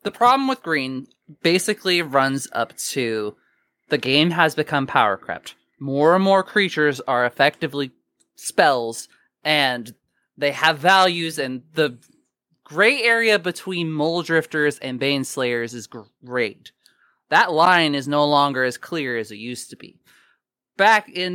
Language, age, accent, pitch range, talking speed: English, 20-39, American, 125-170 Hz, 145 wpm